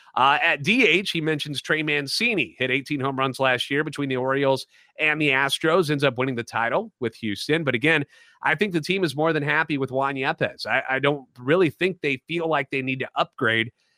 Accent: American